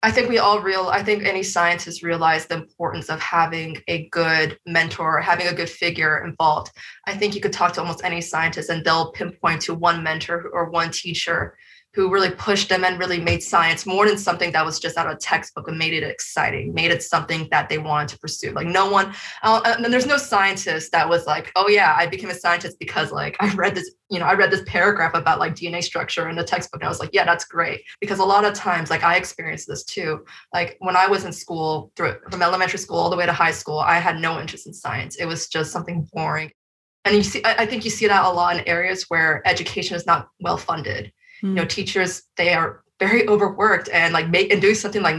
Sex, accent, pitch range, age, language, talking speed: female, American, 165-195 Hz, 20-39, English, 235 wpm